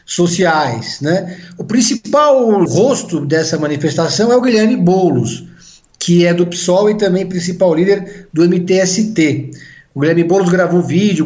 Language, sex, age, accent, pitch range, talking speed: Portuguese, male, 50-69, Brazilian, 160-220 Hz, 145 wpm